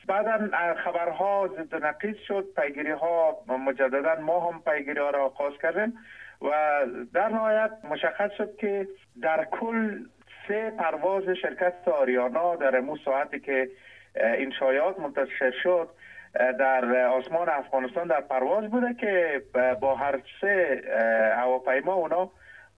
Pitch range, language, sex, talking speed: 130-185 Hz, English, male, 120 wpm